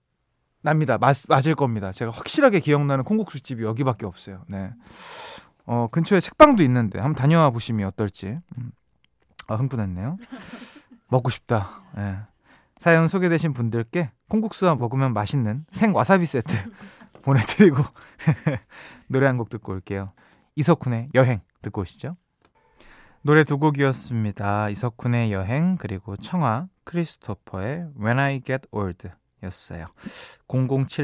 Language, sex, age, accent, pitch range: Korean, male, 20-39, native, 110-170 Hz